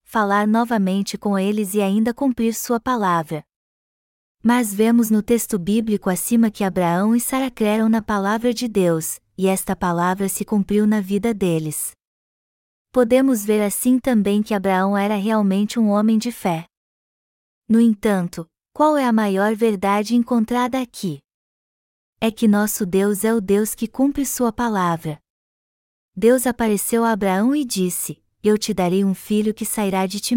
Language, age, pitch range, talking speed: Portuguese, 20-39, 195-230 Hz, 155 wpm